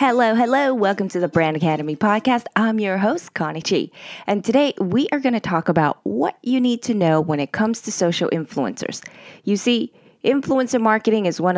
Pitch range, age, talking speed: 175-245 Hz, 20-39, 195 wpm